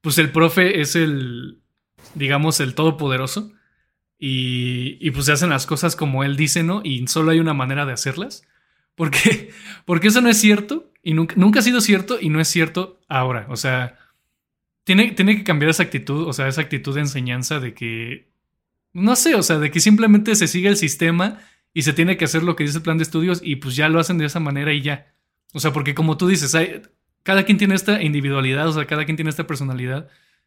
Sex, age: male, 20-39